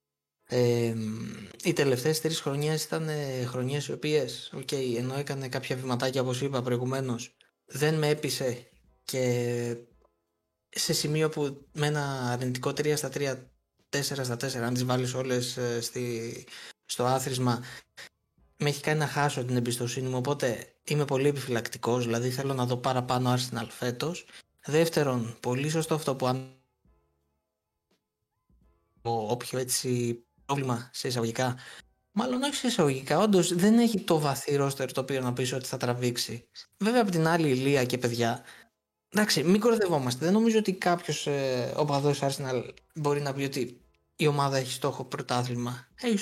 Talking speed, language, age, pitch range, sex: 150 wpm, Greek, 20-39, 125-155 Hz, male